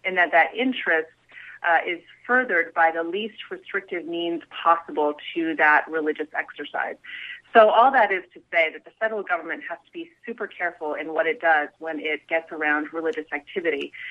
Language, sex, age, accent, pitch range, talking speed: English, female, 30-49, American, 160-215 Hz, 180 wpm